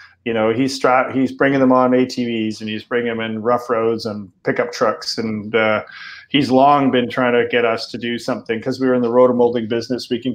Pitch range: 115-130 Hz